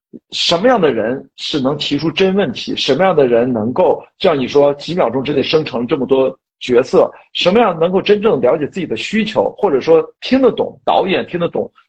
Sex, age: male, 50-69